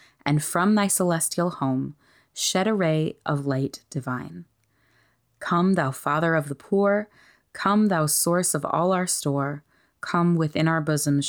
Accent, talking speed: American, 150 wpm